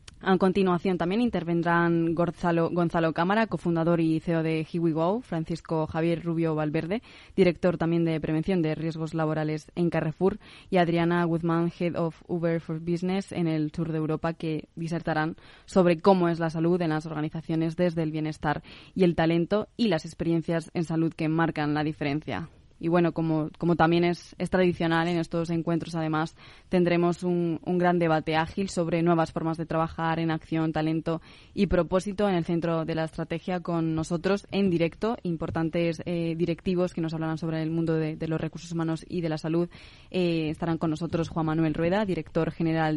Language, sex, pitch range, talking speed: Spanish, female, 160-175 Hz, 180 wpm